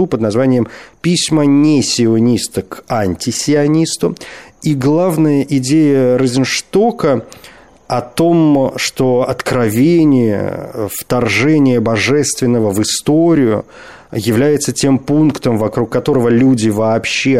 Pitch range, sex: 110-150 Hz, male